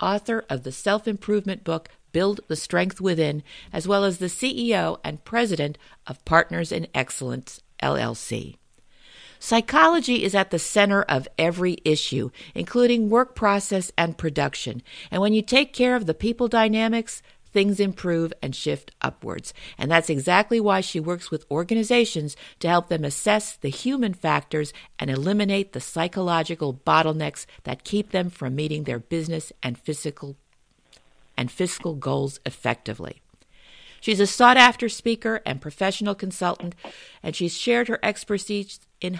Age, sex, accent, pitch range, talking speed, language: 50-69, female, American, 160-215 Hz, 140 wpm, English